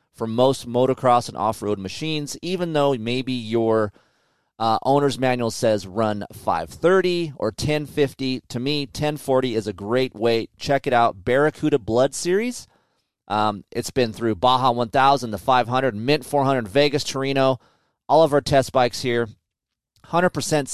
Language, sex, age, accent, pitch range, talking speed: English, male, 30-49, American, 115-145 Hz, 145 wpm